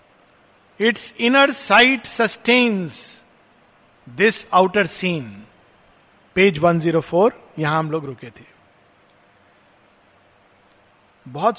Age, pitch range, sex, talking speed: 50-69, 160-235 Hz, male, 90 wpm